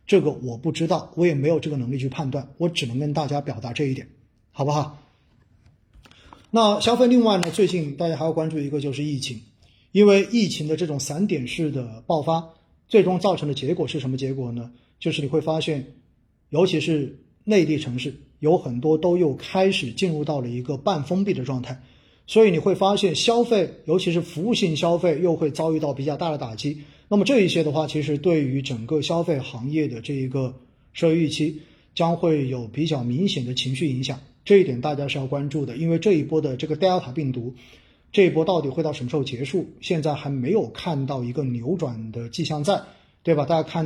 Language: Chinese